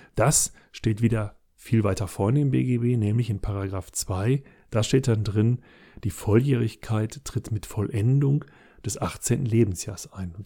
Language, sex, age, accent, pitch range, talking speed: German, male, 40-59, German, 100-115 Hz, 145 wpm